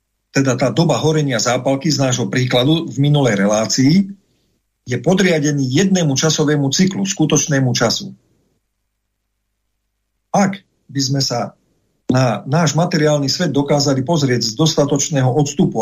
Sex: male